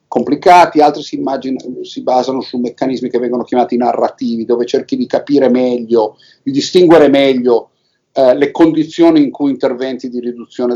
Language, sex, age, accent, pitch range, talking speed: Italian, male, 50-69, native, 130-180 Hz, 155 wpm